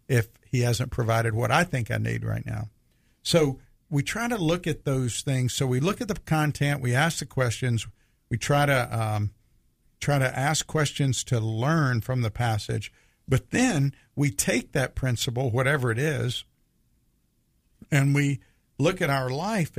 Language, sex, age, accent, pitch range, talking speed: English, male, 50-69, American, 115-145 Hz, 175 wpm